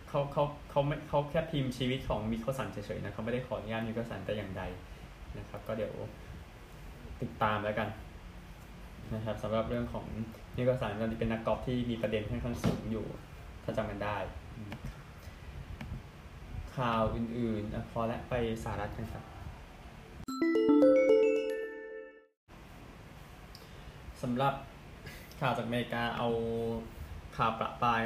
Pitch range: 105-125 Hz